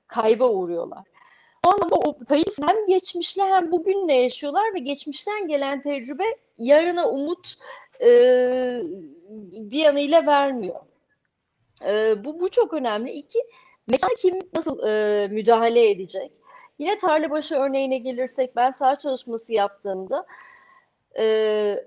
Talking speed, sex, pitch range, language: 115 wpm, female, 220-350 Hz, Turkish